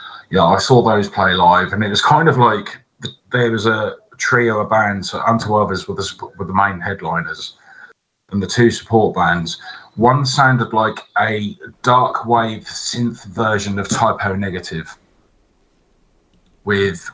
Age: 30-49